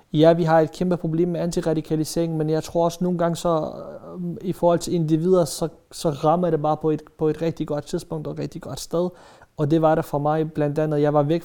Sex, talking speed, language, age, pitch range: male, 245 wpm, Danish, 30-49, 150-175 Hz